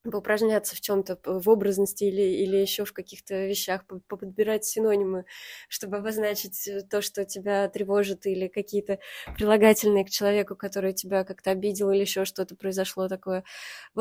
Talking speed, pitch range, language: 145 wpm, 195-220 Hz, Russian